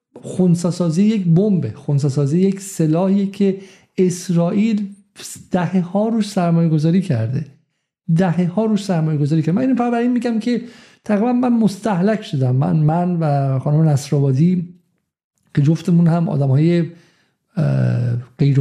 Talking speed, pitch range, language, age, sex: 130 wpm, 150-185 Hz, Persian, 50-69, male